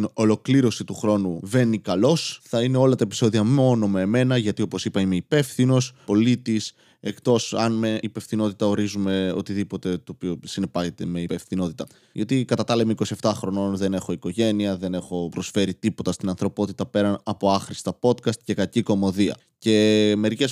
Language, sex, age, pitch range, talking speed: Greek, male, 20-39, 100-120 Hz, 160 wpm